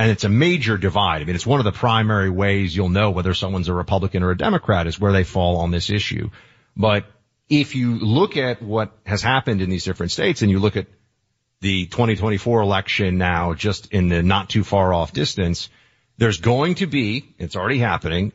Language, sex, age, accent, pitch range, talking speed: English, male, 40-59, American, 100-120 Hz, 200 wpm